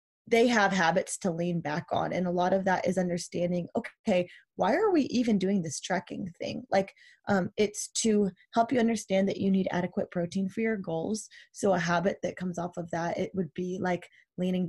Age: 20-39